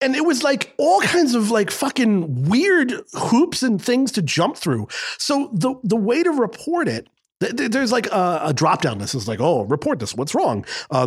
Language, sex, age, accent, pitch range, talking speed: English, male, 40-59, American, 160-260 Hz, 215 wpm